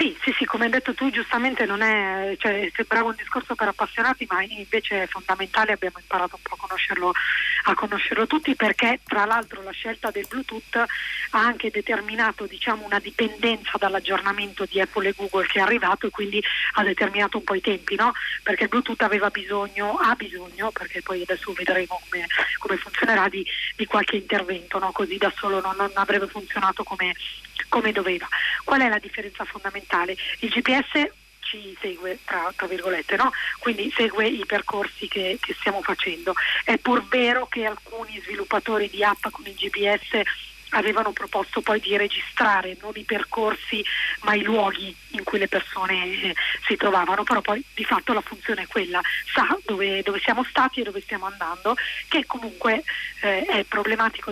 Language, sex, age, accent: Italian, female, 30-49, native